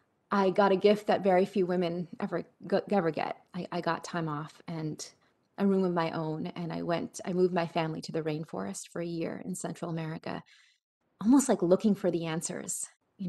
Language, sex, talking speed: English, female, 210 wpm